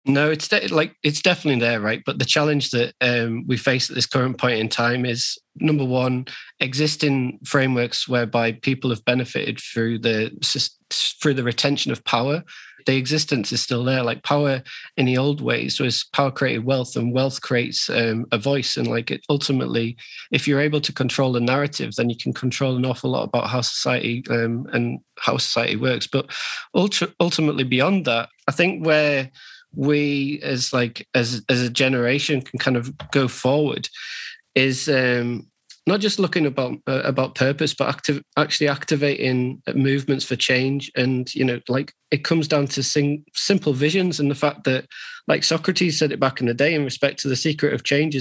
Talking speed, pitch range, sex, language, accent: 190 wpm, 125-145 Hz, male, English, British